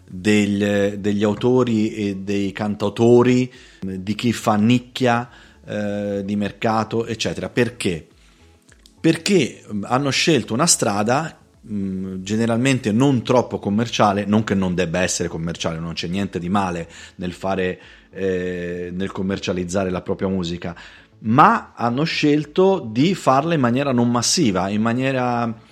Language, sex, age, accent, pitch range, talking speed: Italian, male, 30-49, native, 100-125 Hz, 130 wpm